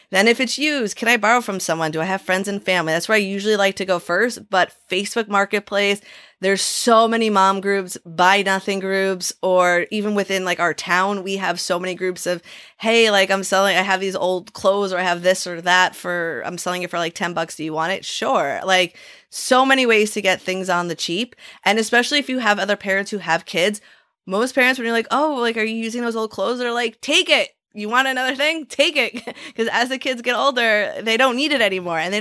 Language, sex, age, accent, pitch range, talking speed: English, female, 20-39, American, 180-225 Hz, 240 wpm